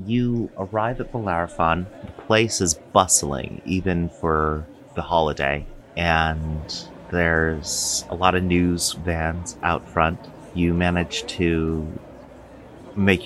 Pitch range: 75-90 Hz